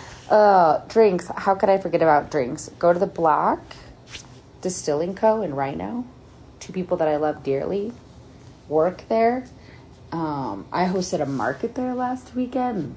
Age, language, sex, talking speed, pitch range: 30-49, English, female, 150 wpm, 140-200 Hz